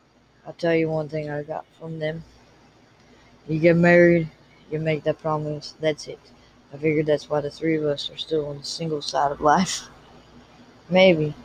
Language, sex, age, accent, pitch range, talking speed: English, female, 20-39, American, 150-170 Hz, 185 wpm